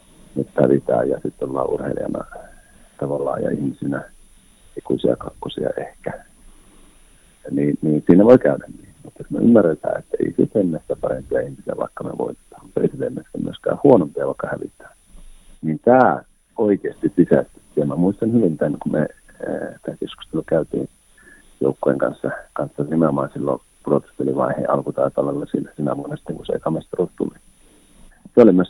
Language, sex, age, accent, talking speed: Finnish, male, 50-69, native, 145 wpm